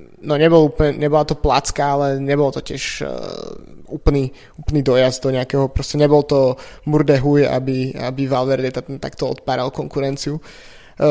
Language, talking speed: Slovak, 130 wpm